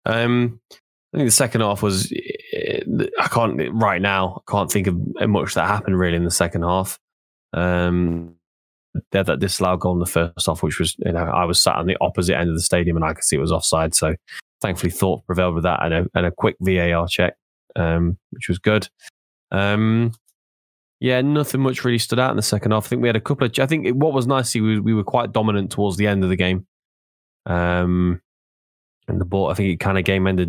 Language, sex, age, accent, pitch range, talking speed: English, male, 10-29, British, 85-100 Hz, 215 wpm